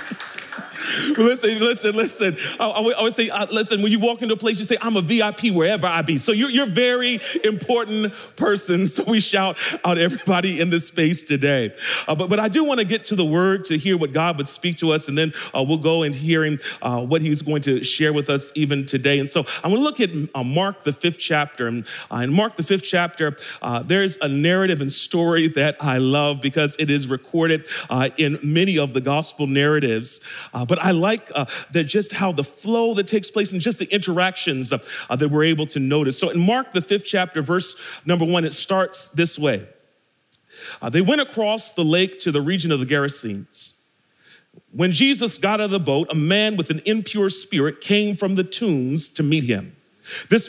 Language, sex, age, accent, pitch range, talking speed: English, male, 40-59, American, 150-210 Hz, 215 wpm